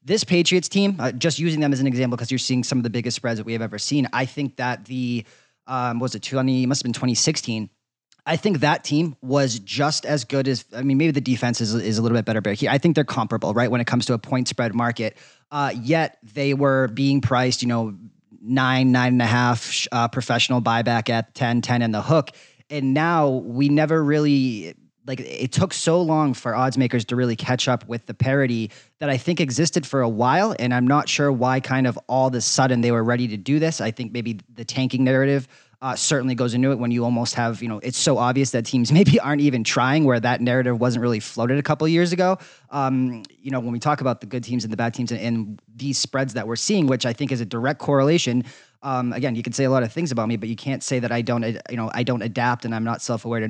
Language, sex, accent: English, male, American